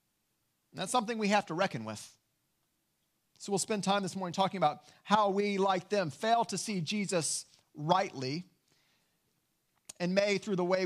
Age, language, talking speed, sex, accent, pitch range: 40-59, English, 160 wpm, male, American, 160-200 Hz